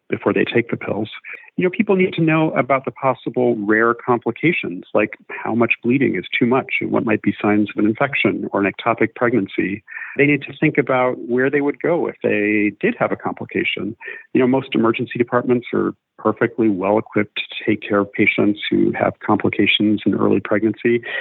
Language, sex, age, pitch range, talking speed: English, male, 40-59, 110-140 Hz, 195 wpm